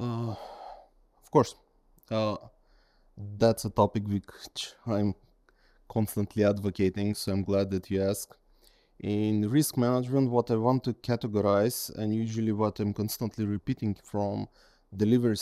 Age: 20-39